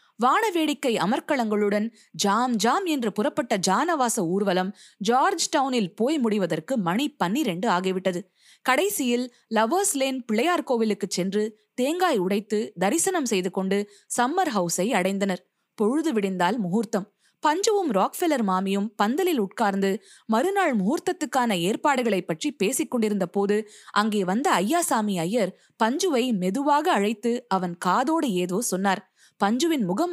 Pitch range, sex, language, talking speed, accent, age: 190-290 Hz, female, Tamil, 110 wpm, native, 20-39